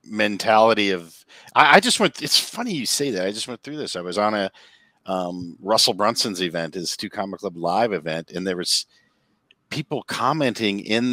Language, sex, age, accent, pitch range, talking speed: English, male, 40-59, American, 95-125 Hz, 195 wpm